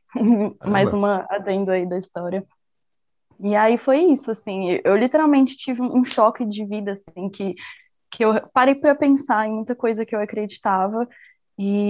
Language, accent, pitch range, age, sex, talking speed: Portuguese, Brazilian, 195-240 Hz, 10-29, female, 160 wpm